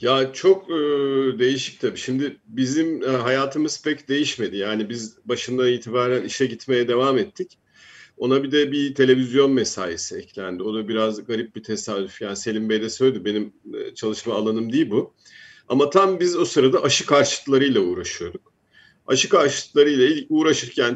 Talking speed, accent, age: 155 wpm, native, 50-69